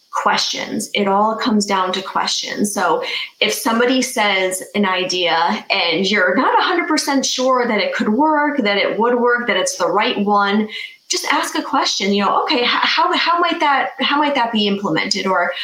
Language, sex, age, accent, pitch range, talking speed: English, female, 20-39, American, 195-260 Hz, 185 wpm